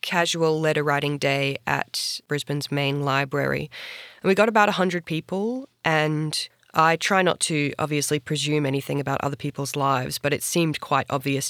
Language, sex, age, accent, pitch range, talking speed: English, female, 20-39, Australian, 140-165 Hz, 155 wpm